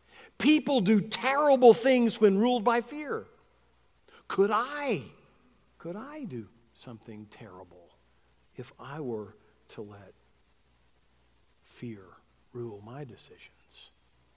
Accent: American